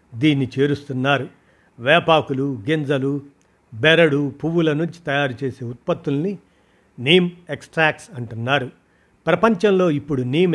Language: Telugu